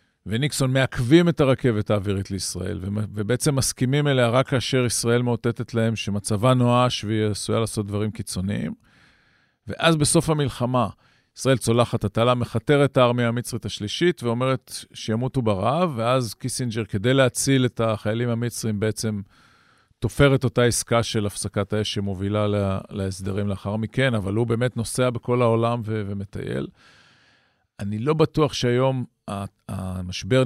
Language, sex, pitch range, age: Hebrew, male, 105-125 Hz, 40-59